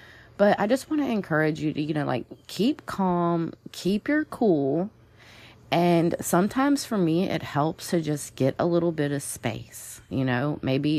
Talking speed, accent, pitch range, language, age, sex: 180 wpm, American, 120-160 Hz, English, 30-49, female